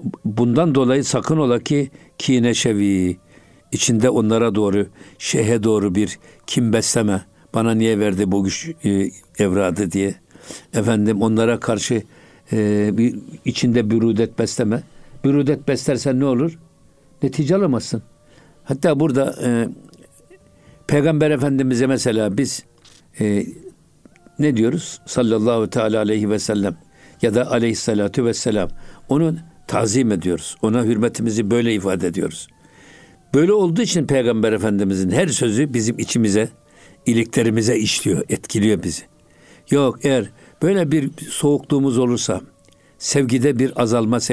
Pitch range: 110-140 Hz